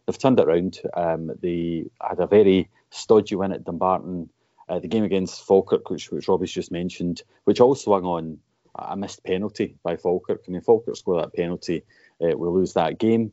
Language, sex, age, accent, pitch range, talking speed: English, male, 30-49, British, 85-105 Hz, 200 wpm